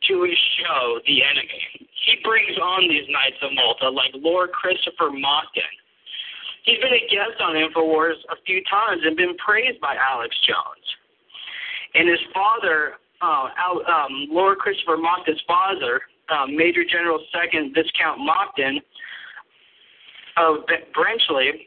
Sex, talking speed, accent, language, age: male, 135 wpm, American, English, 50-69